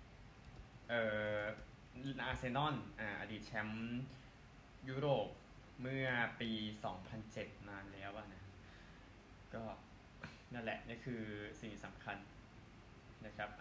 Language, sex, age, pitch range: Thai, male, 20-39, 105-125 Hz